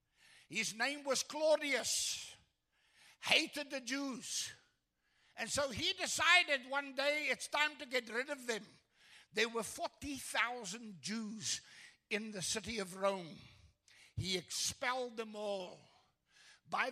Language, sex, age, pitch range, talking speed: English, male, 60-79, 225-295 Hz, 120 wpm